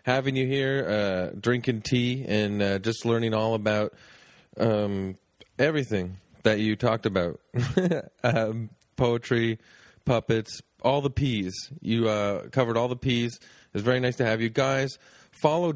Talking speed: 145 wpm